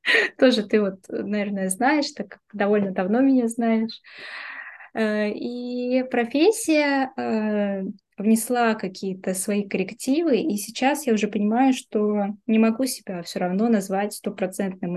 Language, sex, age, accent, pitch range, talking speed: Russian, female, 20-39, native, 190-225 Hz, 120 wpm